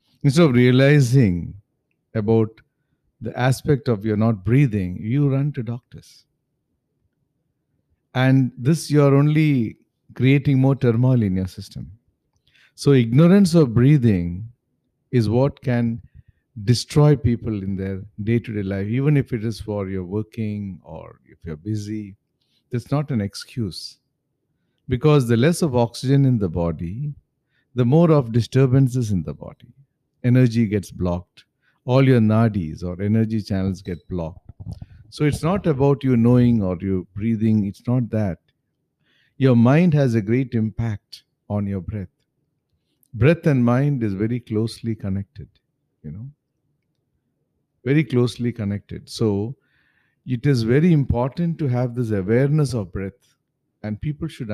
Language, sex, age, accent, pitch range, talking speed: English, male, 50-69, Indian, 105-140 Hz, 140 wpm